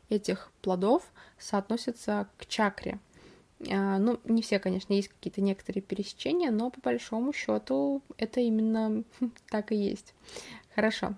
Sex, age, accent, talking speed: female, 20-39, native, 130 wpm